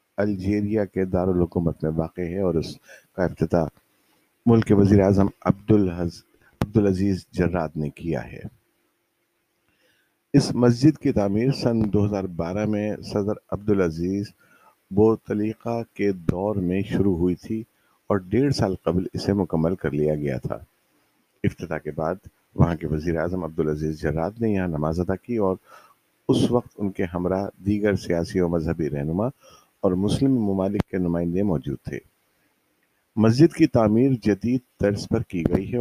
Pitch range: 85-105 Hz